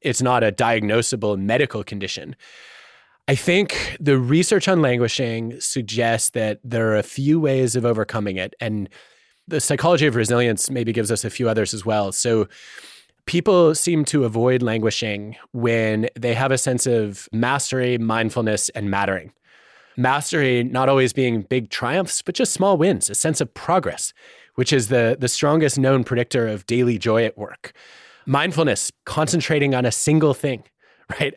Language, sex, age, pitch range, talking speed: English, male, 30-49, 115-145 Hz, 160 wpm